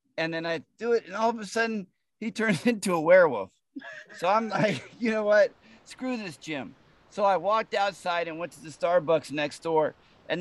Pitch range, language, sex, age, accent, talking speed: 165-230 Hz, English, male, 50-69, American, 210 wpm